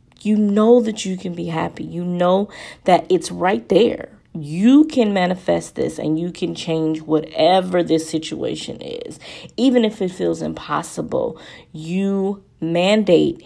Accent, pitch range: American, 160-190 Hz